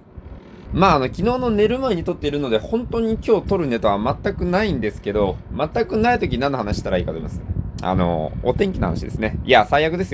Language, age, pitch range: Japanese, 20-39, 110-185 Hz